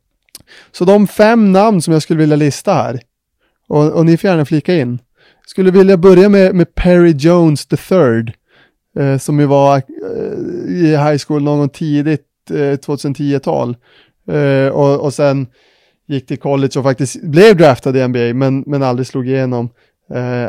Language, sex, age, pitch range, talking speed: Swedish, male, 30-49, 125-155 Hz, 170 wpm